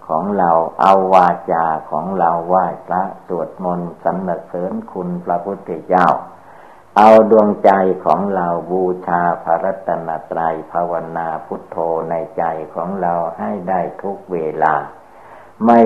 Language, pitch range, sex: Thai, 85-100 Hz, male